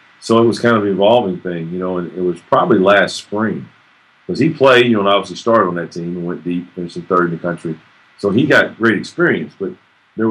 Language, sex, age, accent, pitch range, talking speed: English, male, 40-59, American, 90-100 Hz, 250 wpm